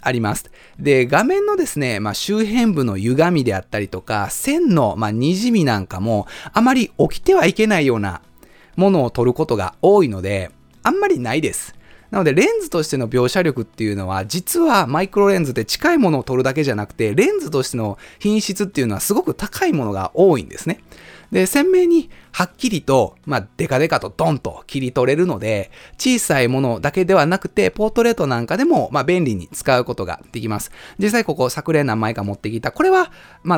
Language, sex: Japanese, male